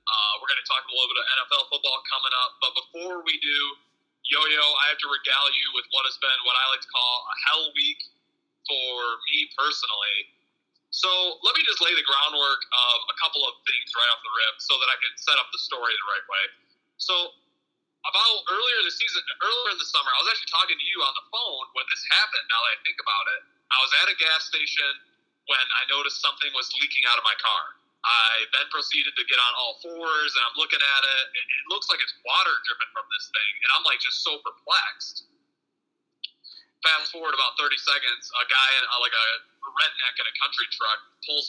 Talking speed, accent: 225 wpm, American